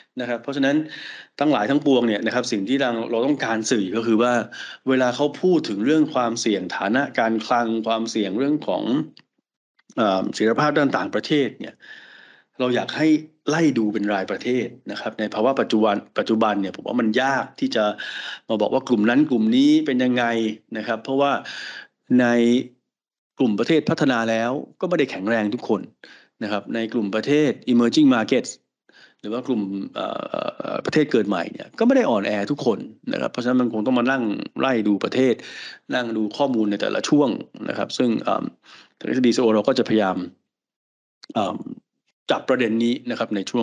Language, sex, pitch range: Thai, male, 110-135 Hz